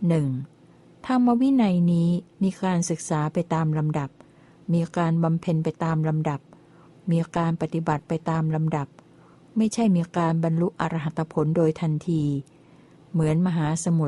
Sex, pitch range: female, 155-175 Hz